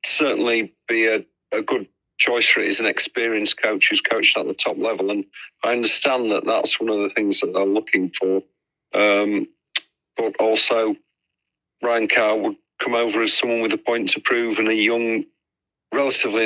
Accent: British